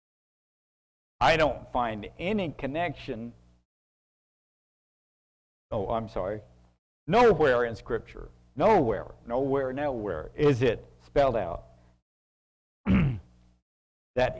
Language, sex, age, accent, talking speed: English, male, 60-79, American, 80 wpm